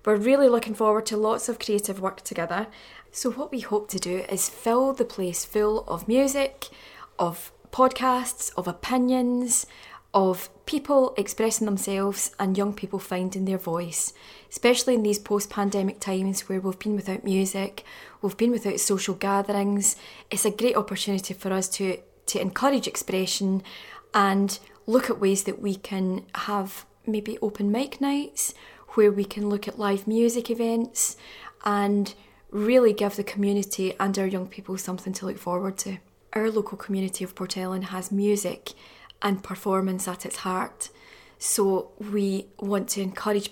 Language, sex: English, female